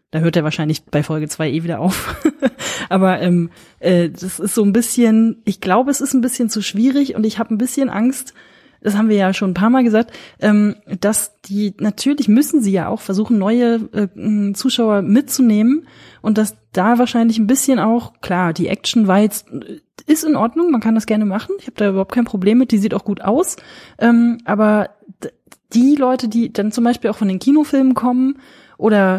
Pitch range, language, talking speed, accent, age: 185-235 Hz, German, 205 wpm, German, 20-39